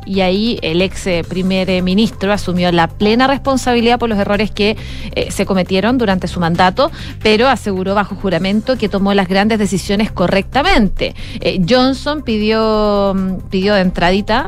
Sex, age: female, 30-49